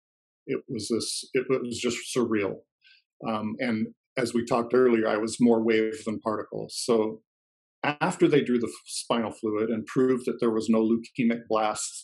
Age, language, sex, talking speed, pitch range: 40-59, English, male, 170 wpm, 115-135 Hz